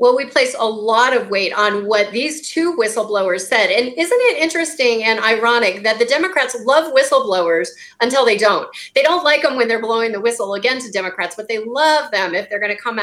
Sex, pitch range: female, 205-280 Hz